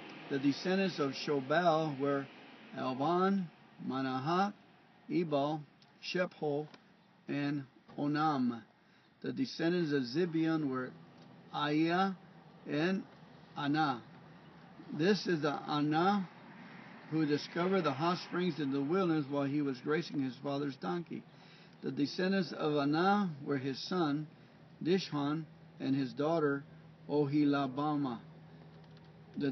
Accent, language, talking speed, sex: American, English, 105 wpm, male